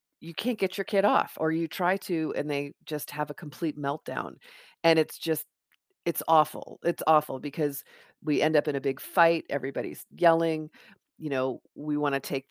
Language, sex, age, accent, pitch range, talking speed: English, female, 40-59, American, 150-195 Hz, 190 wpm